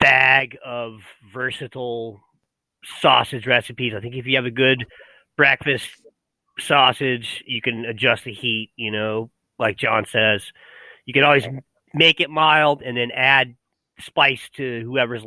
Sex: male